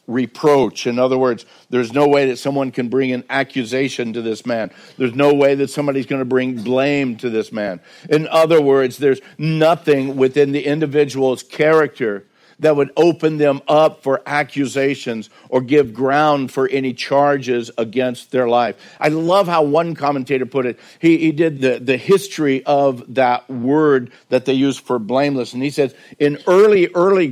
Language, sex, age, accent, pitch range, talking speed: English, male, 50-69, American, 130-155 Hz, 175 wpm